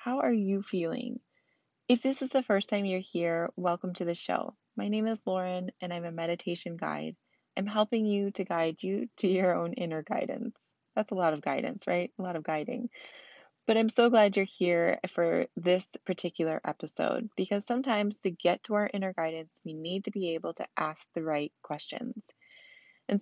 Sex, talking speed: female, 195 wpm